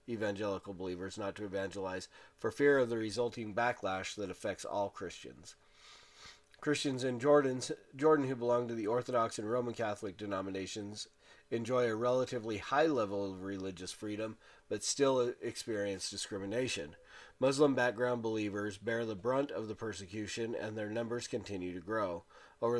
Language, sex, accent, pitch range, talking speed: English, male, American, 100-125 Hz, 145 wpm